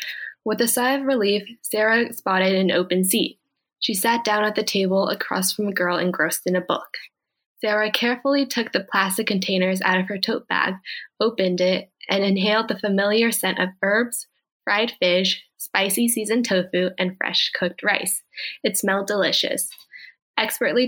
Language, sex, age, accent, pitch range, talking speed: English, female, 20-39, American, 185-225 Hz, 165 wpm